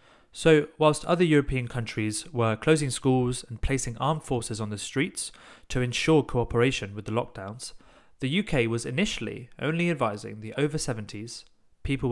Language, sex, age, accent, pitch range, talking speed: English, male, 30-49, British, 115-150 Hz, 150 wpm